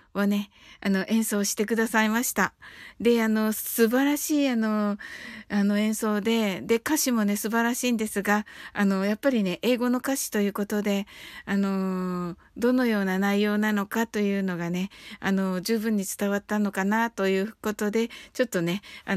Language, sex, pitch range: Japanese, female, 200-240 Hz